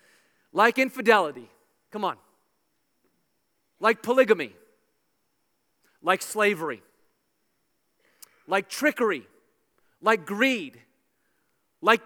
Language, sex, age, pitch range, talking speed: English, male, 30-49, 205-260 Hz, 65 wpm